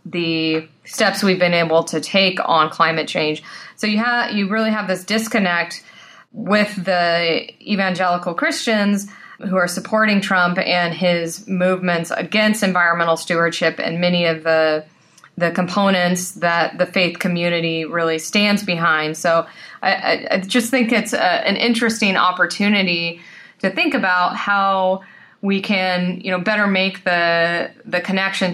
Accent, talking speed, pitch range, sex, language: American, 145 wpm, 165-195 Hz, female, English